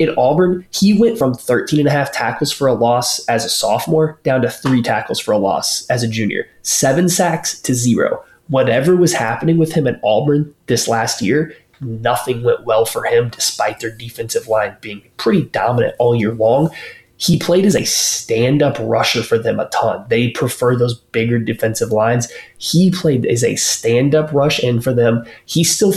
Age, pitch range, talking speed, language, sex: 20-39, 120-150 Hz, 185 wpm, English, male